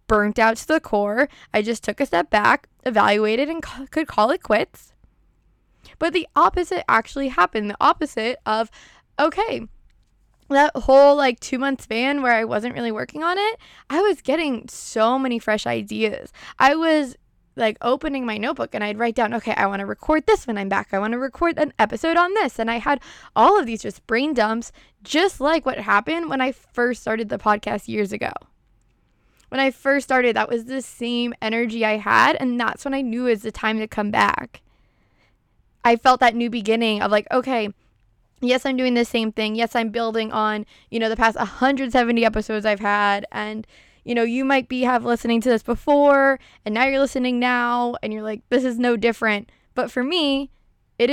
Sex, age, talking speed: female, 10-29, 200 wpm